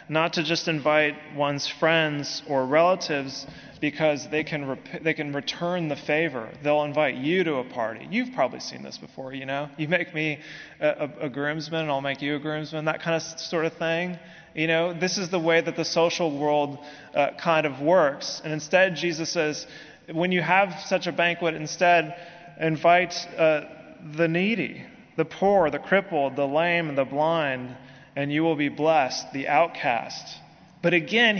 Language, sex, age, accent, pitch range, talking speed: English, male, 20-39, American, 145-170 Hz, 185 wpm